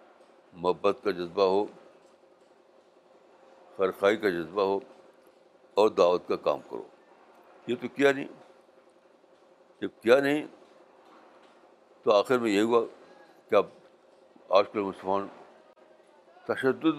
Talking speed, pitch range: 105 wpm, 120-185 Hz